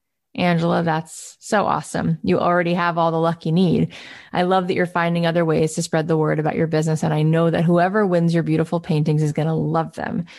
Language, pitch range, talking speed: English, 160-195 Hz, 225 wpm